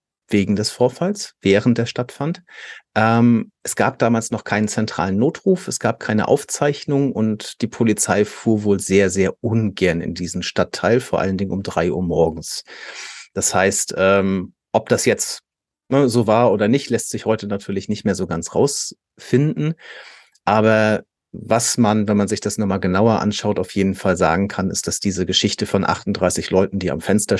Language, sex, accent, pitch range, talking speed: German, male, German, 100-120 Hz, 175 wpm